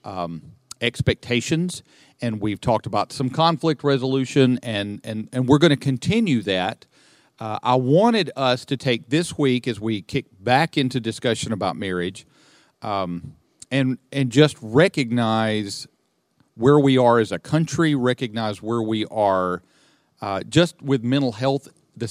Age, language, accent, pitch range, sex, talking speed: 50-69, English, American, 110-140 Hz, male, 145 wpm